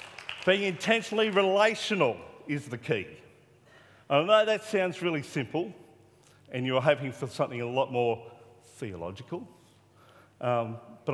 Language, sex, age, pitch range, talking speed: English, male, 40-59, 115-155 Hz, 125 wpm